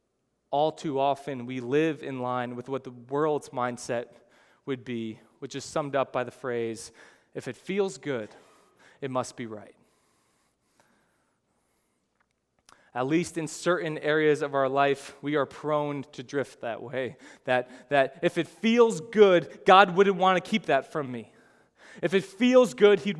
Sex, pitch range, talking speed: male, 135-180 Hz, 165 wpm